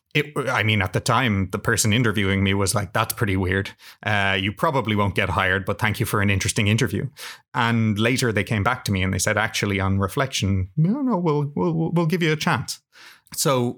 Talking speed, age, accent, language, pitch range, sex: 220 wpm, 30-49, Irish, English, 105-125 Hz, male